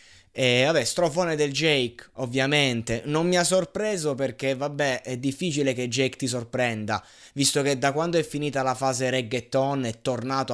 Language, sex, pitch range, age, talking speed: Italian, male, 115-140 Hz, 20-39, 165 wpm